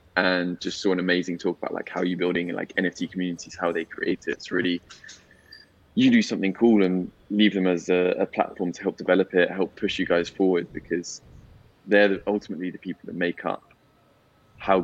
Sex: male